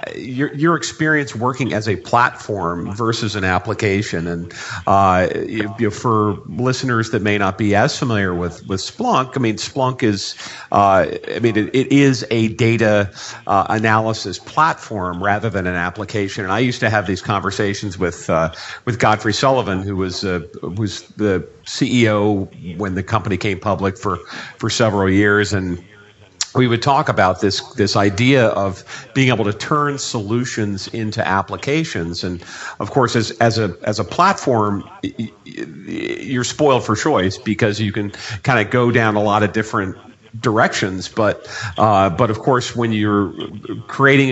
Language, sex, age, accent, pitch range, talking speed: English, male, 50-69, American, 100-120 Hz, 160 wpm